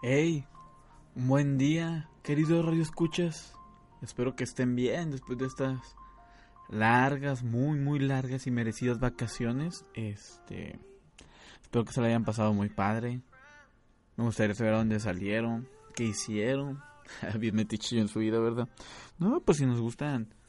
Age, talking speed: 20-39, 140 wpm